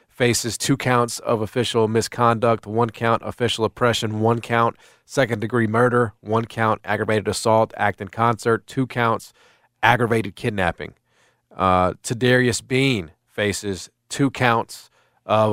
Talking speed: 130 wpm